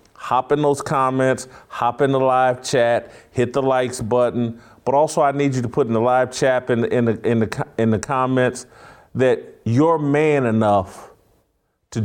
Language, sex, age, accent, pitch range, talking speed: English, male, 40-59, American, 105-130 Hz, 165 wpm